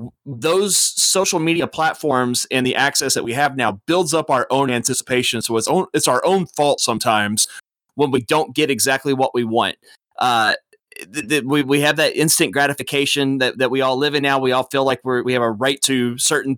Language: English